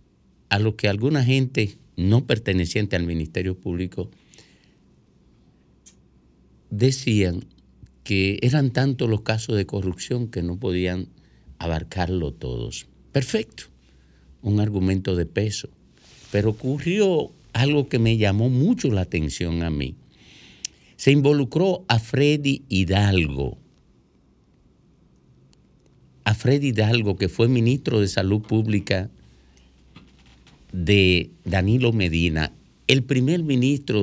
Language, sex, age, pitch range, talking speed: Spanish, male, 50-69, 85-120 Hz, 105 wpm